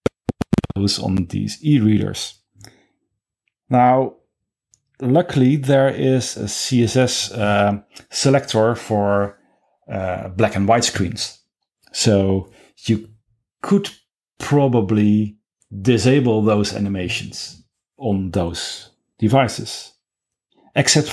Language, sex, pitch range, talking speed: German, male, 105-130 Hz, 80 wpm